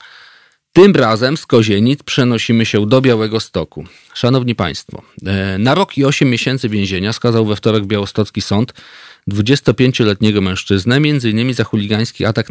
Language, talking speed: Polish, 140 wpm